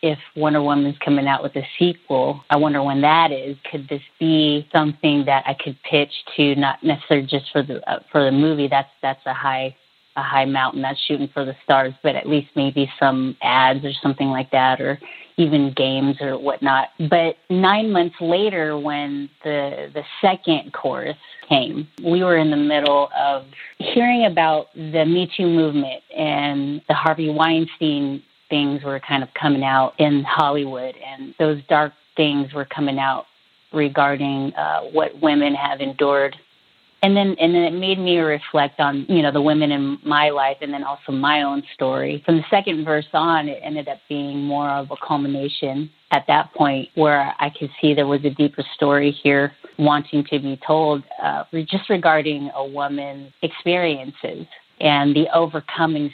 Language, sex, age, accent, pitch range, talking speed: English, female, 30-49, American, 140-155 Hz, 175 wpm